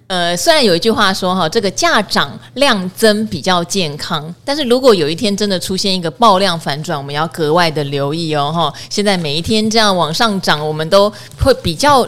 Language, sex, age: Chinese, female, 30-49